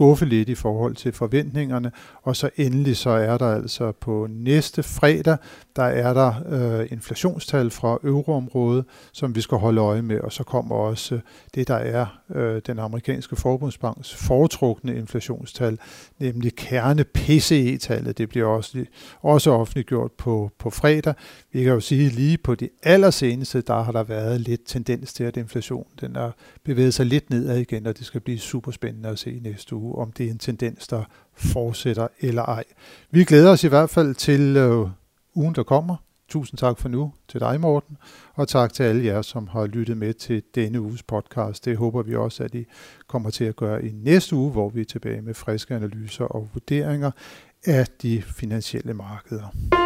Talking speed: 180 wpm